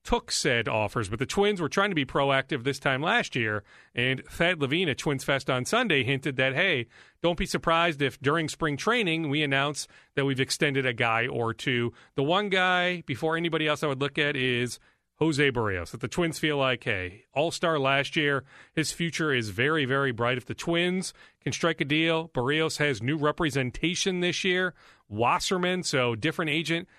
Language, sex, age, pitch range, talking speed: English, male, 40-59, 125-160 Hz, 195 wpm